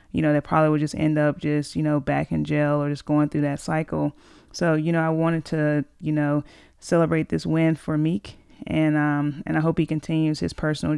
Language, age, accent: English, 30-49, American